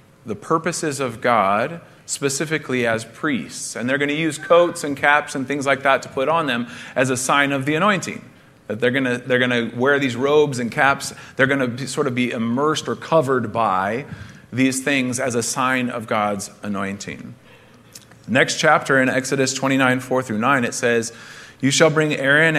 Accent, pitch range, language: American, 120-145 Hz, English